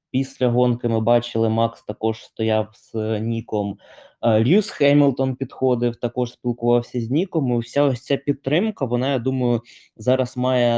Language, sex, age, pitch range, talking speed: Ukrainian, male, 20-39, 110-135 Hz, 155 wpm